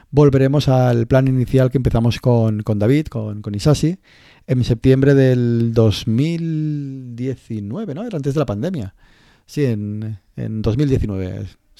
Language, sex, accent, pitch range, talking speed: Spanish, male, Spanish, 110-135 Hz, 130 wpm